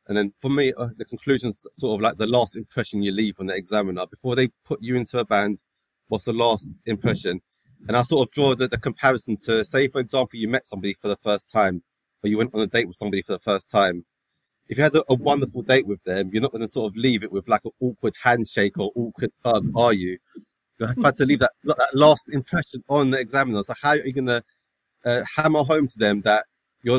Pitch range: 105-130 Hz